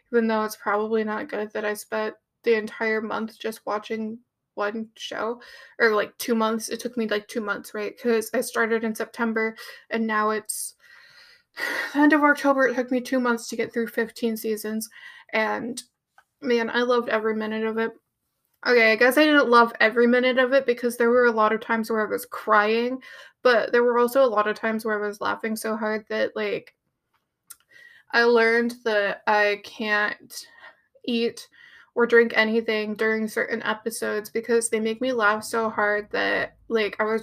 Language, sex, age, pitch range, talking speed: English, female, 20-39, 220-250 Hz, 190 wpm